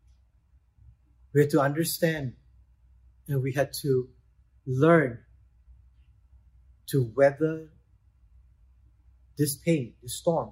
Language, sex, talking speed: English, male, 85 wpm